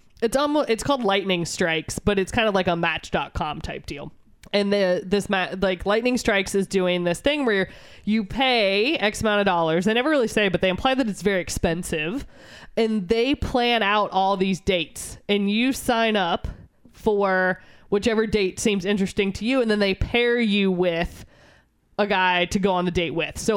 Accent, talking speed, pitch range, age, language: American, 200 wpm, 180-225 Hz, 20-39, English